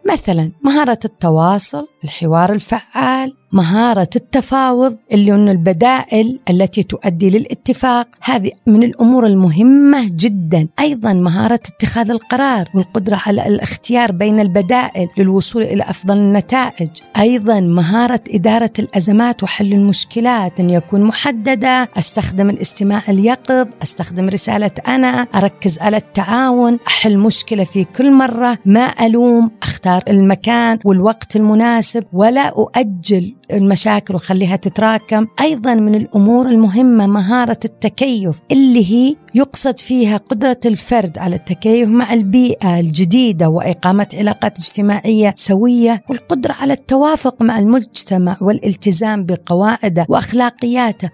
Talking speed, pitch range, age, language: 110 wpm, 195-245 Hz, 40-59, Arabic